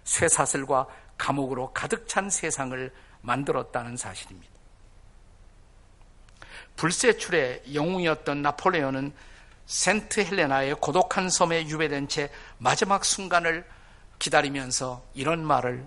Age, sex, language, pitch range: 50-69, male, Korean, 120-175 Hz